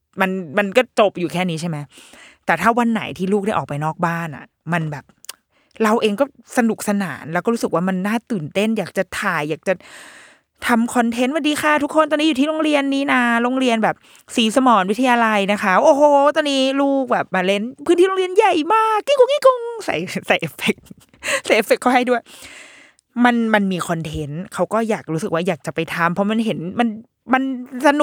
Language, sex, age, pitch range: Thai, female, 20-39, 170-245 Hz